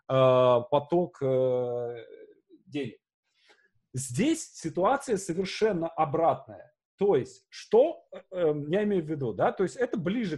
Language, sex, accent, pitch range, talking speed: Russian, male, native, 135-200 Hz, 105 wpm